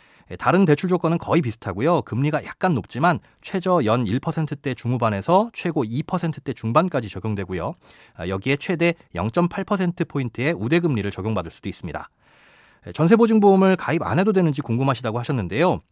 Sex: male